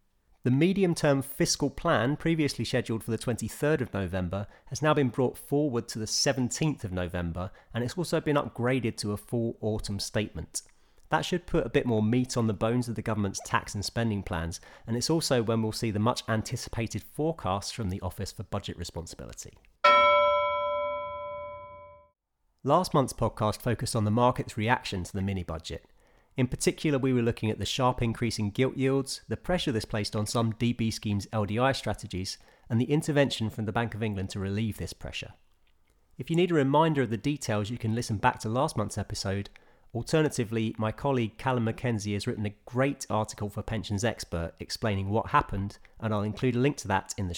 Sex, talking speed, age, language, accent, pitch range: male, 190 wpm, 30-49, English, British, 100-130 Hz